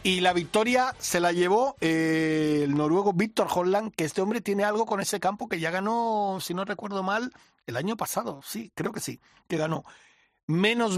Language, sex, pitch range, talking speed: Spanish, male, 160-200 Hz, 190 wpm